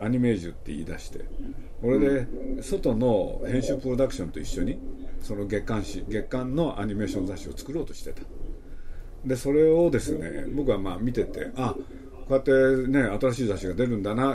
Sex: male